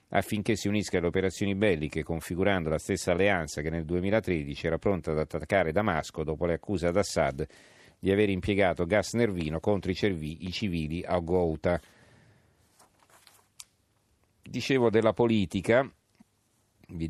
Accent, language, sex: native, Italian, male